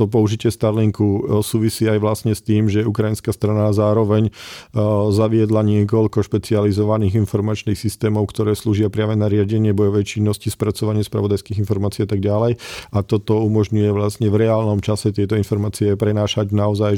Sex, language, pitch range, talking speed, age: male, Slovak, 105-110 Hz, 145 wpm, 40-59